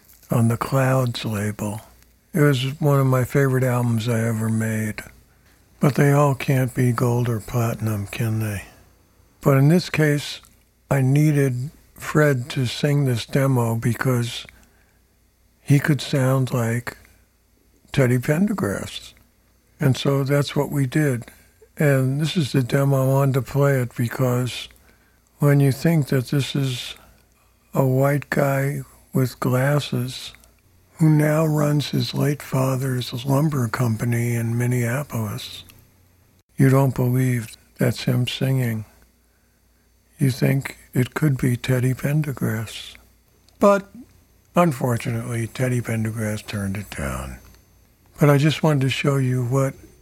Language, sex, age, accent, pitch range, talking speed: English, male, 60-79, American, 110-140 Hz, 130 wpm